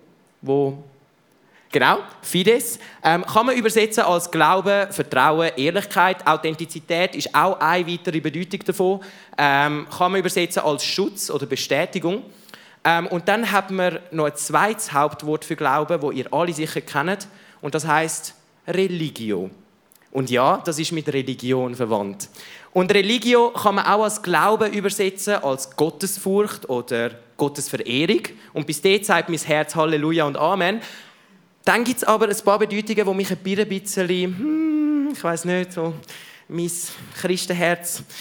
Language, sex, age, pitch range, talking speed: German, male, 20-39, 155-205 Hz, 145 wpm